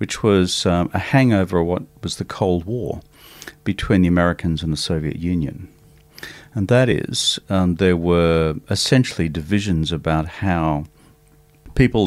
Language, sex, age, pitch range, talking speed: English, male, 50-69, 80-105 Hz, 145 wpm